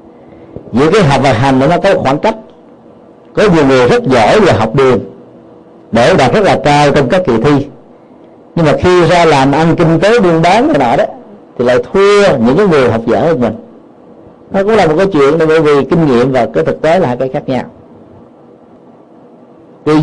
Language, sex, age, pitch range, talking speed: Vietnamese, male, 50-69, 120-165 Hz, 210 wpm